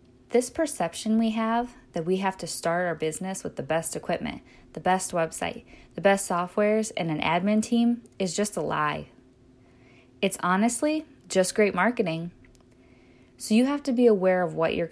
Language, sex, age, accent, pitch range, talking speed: English, female, 10-29, American, 155-220 Hz, 175 wpm